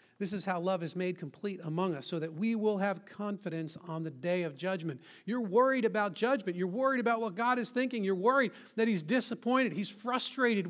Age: 40-59